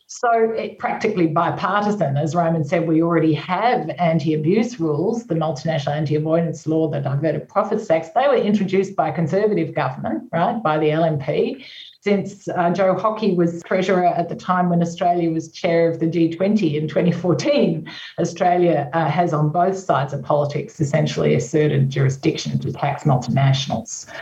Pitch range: 155-195 Hz